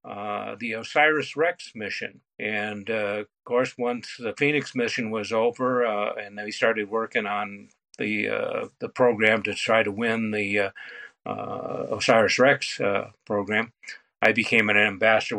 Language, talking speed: English, 150 wpm